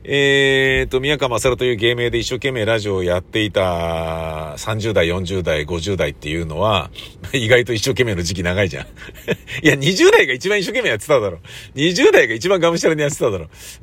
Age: 50-69